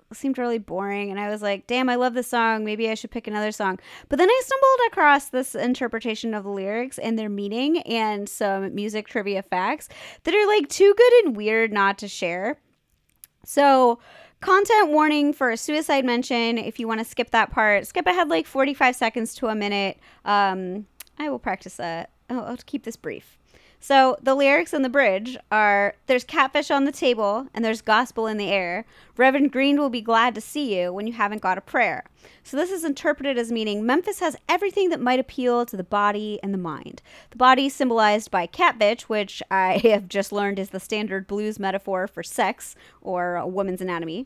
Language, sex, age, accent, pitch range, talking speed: English, female, 20-39, American, 205-280 Hz, 205 wpm